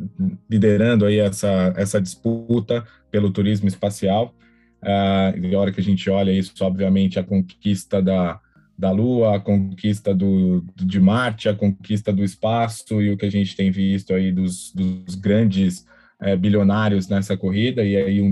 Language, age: Portuguese, 20-39